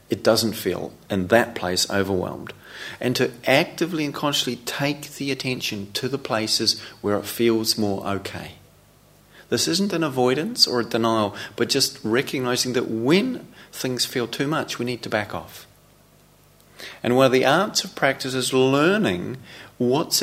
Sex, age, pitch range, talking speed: male, 40-59, 105-130 Hz, 160 wpm